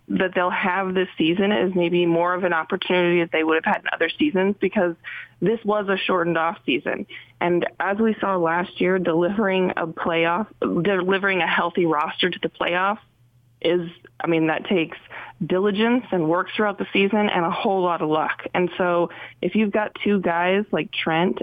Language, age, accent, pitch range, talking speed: English, 20-39, American, 165-195 Hz, 190 wpm